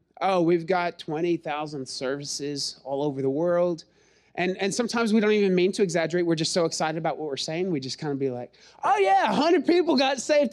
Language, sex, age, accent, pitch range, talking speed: English, male, 30-49, American, 135-195 Hz, 215 wpm